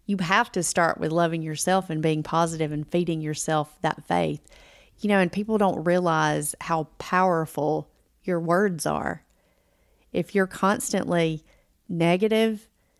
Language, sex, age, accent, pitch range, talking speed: English, female, 40-59, American, 165-190 Hz, 140 wpm